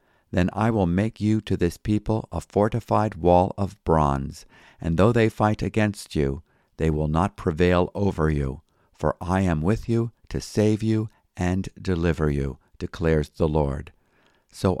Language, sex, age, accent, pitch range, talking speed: English, male, 50-69, American, 80-100 Hz, 160 wpm